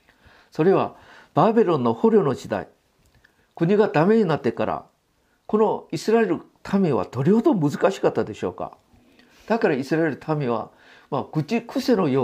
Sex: male